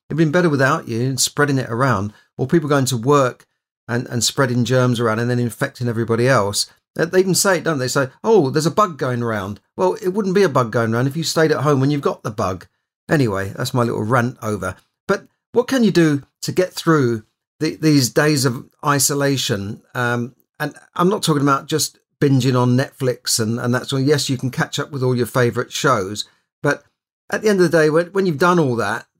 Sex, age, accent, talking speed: male, 40-59, British, 230 wpm